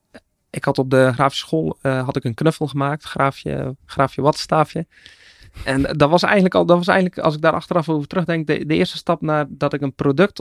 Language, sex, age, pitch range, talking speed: Dutch, male, 20-39, 125-145 Hz, 220 wpm